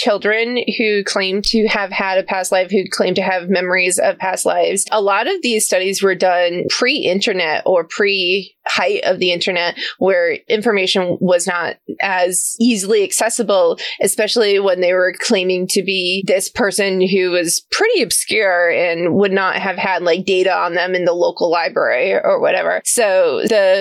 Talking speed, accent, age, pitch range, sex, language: 170 wpm, American, 20-39, 185-225 Hz, female, English